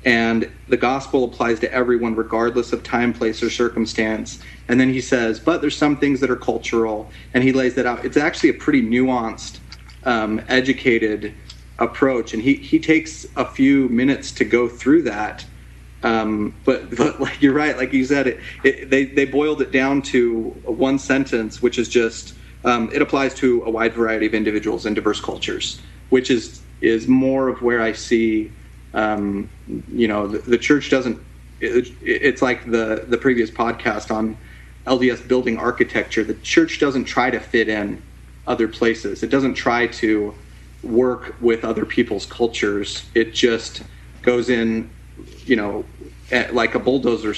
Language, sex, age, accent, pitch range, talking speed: English, male, 30-49, American, 110-130 Hz, 175 wpm